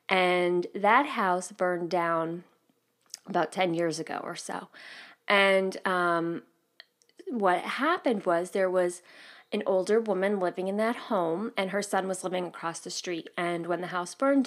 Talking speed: 160 wpm